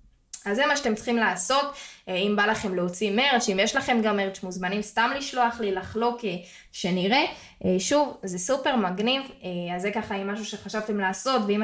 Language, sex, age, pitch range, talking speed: Hebrew, female, 10-29, 190-235 Hz, 175 wpm